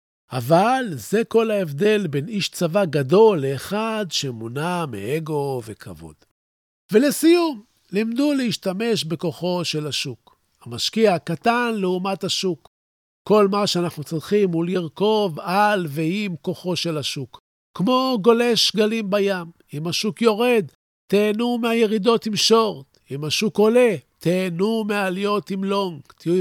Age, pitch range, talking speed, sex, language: 50-69, 160-215 Hz, 120 wpm, male, Hebrew